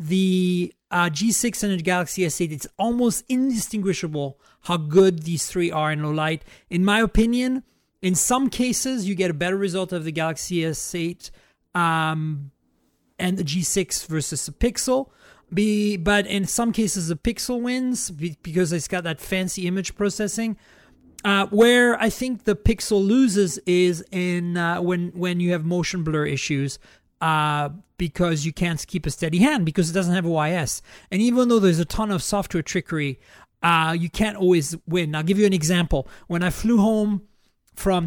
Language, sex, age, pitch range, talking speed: English, male, 40-59, 165-200 Hz, 170 wpm